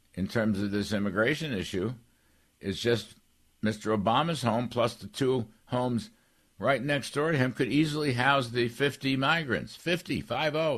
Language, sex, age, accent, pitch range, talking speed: English, male, 60-79, American, 95-140 Hz, 155 wpm